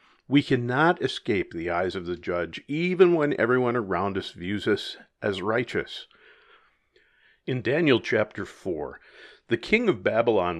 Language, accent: English, American